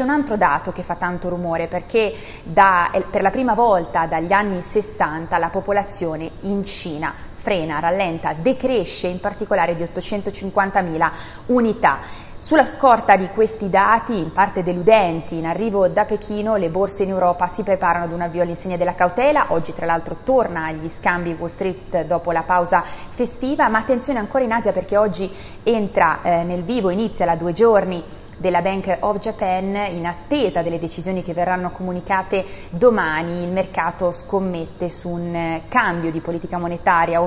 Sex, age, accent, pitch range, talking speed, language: female, 20-39, native, 175-210 Hz, 160 wpm, Italian